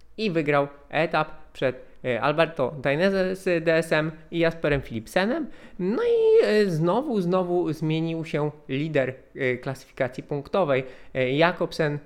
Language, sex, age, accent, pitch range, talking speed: Polish, male, 20-39, native, 130-165 Hz, 105 wpm